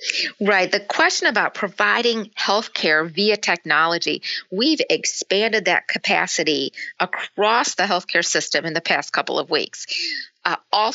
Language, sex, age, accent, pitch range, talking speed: English, female, 40-59, American, 175-225 Hz, 135 wpm